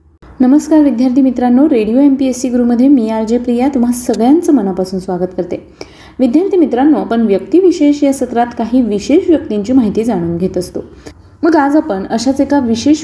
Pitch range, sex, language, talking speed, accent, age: 210-280 Hz, female, Marathi, 170 wpm, native, 20-39